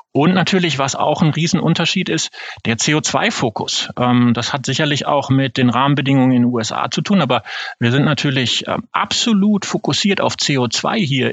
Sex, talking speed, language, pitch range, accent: male, 160 wpm, German, 120-170 Hz, German